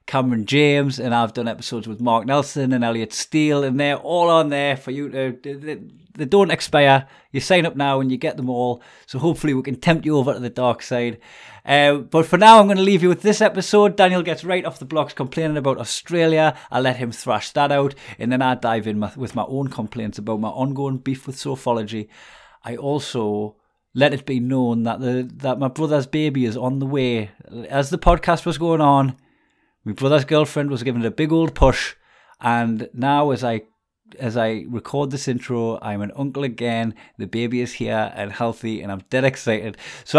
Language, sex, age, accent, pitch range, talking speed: English, male, 30-49, British, 115-155 Hz, 210 wpm